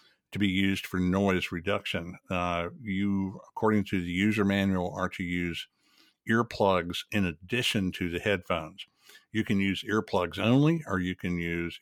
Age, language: 60-79, English